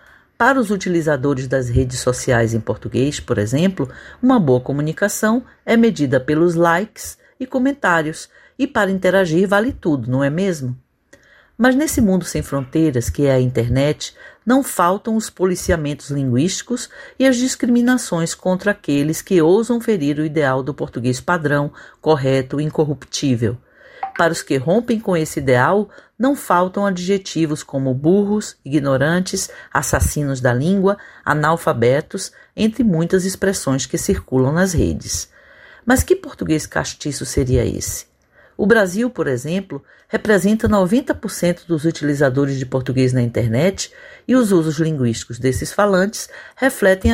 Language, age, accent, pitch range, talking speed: Portuguese, 50-69, Brazilian, 140-210 Hz, 135 wpm